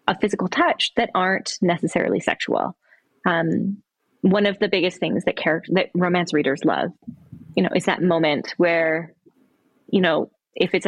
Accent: American